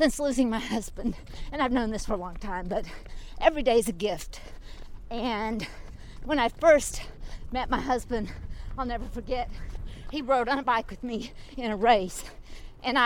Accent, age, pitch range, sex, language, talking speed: American, 50-69, 225-280 Hz, female, English, 180 wpm